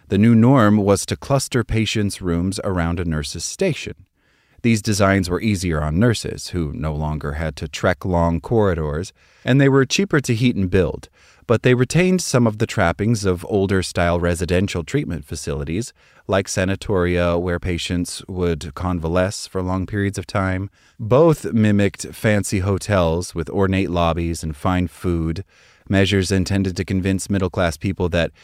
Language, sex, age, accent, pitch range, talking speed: English, male, 30-49, American, 90-110 Hz, 155 wpm